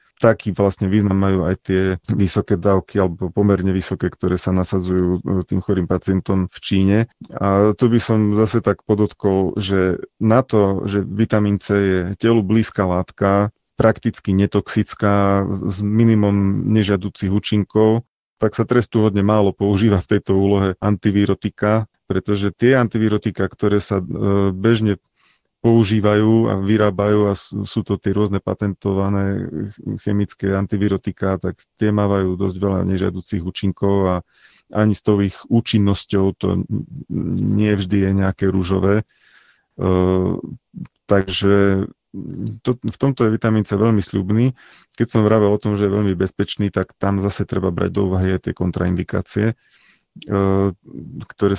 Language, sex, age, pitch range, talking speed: Slovak, male, 30-49, 95-105 Hz, 140 wpm